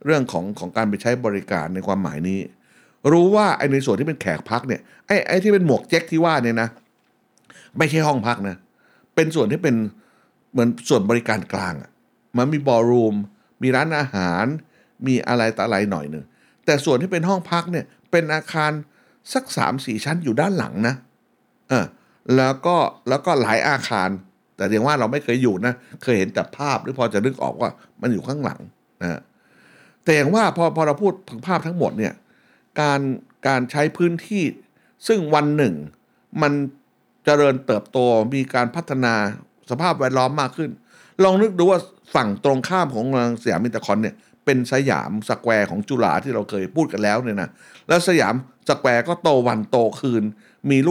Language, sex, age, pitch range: Thai, male, 60-79, 115-160 Hz